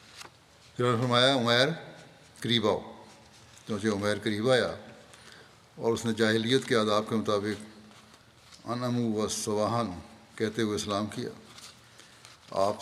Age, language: 60-79, English